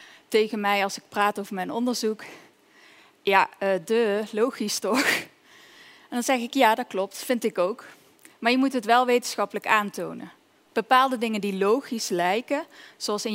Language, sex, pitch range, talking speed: Dutch, female, 200-245 Hz, 165 wpm